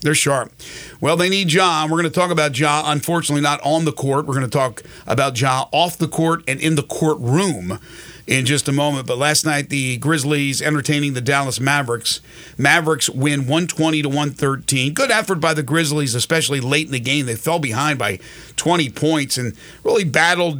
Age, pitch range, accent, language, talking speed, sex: 40-59, 140-165 Hz, American, English, 190 wpm, male